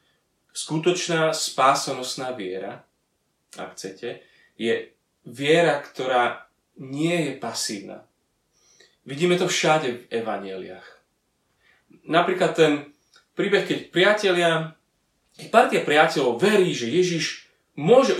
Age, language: 30-49, Slovak